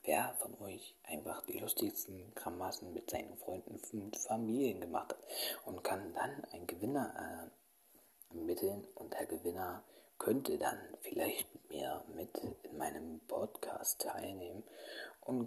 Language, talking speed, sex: German, 130 wpm, male